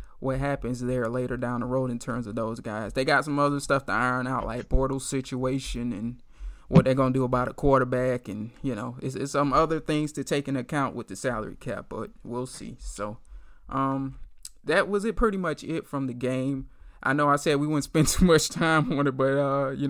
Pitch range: 125-145 Hz